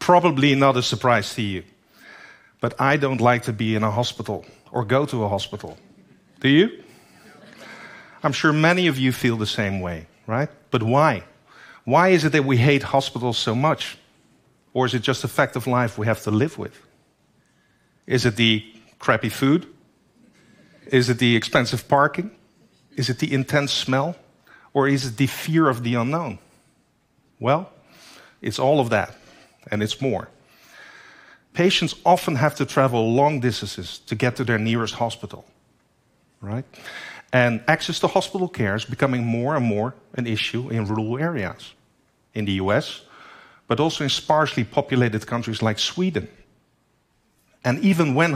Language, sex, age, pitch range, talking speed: French, male, 50-69, 110-145 Hz, 160 wpm